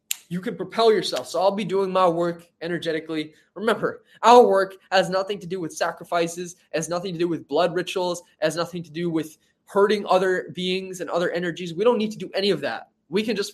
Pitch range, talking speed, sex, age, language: 160-205 Hz, 215 wpm, male, 20-39, English